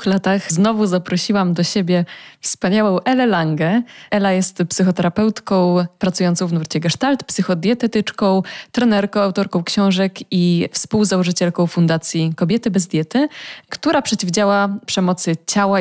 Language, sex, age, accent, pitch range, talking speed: Polish, female, 20-39, native, 175-205 Hz, 110 wpm